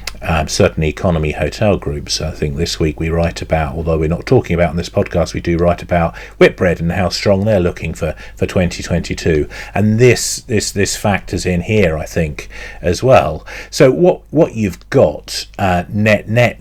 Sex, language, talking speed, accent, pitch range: male, English, 190 wpm, British, 85-105 Hz